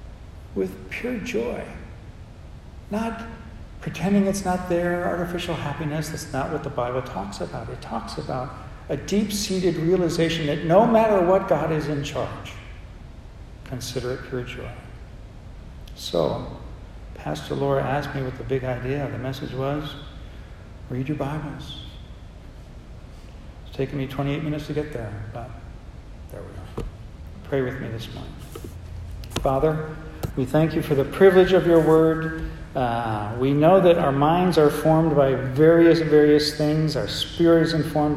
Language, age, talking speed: English, 60-79, 150 wpm